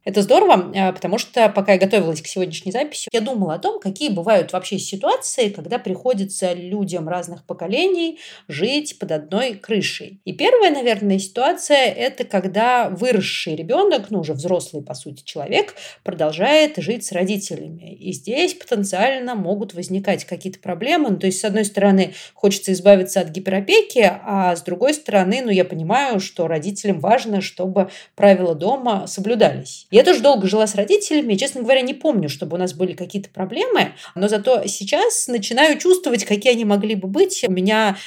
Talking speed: 165 wpm